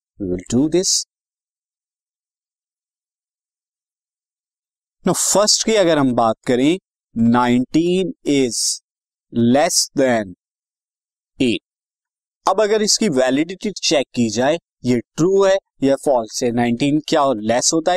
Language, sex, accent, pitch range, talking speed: Hindi, male, native, 125-180 Hz, 85 wpm